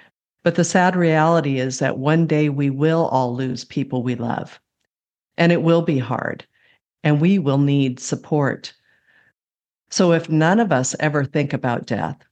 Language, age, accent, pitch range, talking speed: English, 50-69, American, 140-175 Hz, 165 wpm